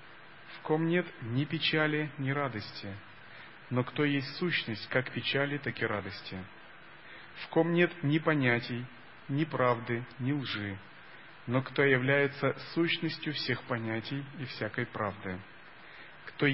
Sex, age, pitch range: male, 40-59, 120-155 Hz